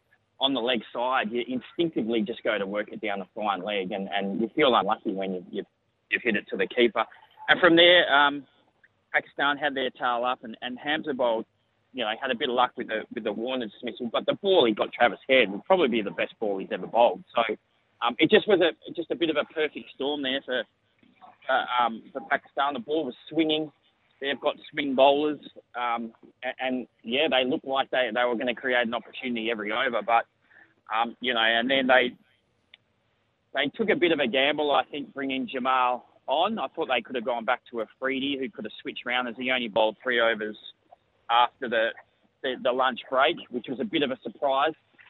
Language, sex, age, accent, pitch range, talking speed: English, male, 20-39, Australian, 115-145 Hz, 225 wpm